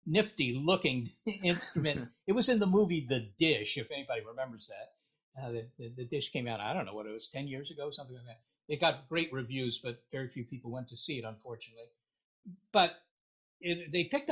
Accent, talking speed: American, 210 wpm